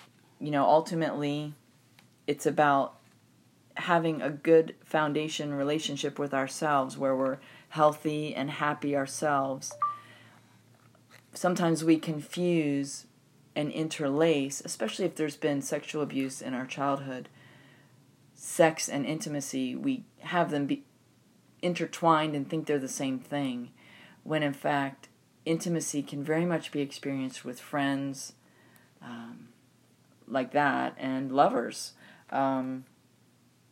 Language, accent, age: English, American, 30-49